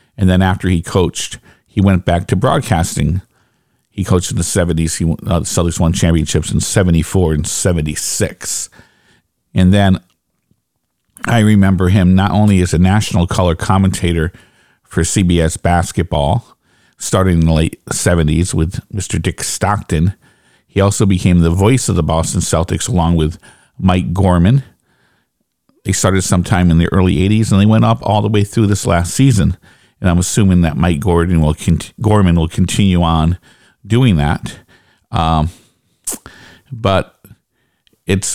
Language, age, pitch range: English, 50-69, 85-105 Hz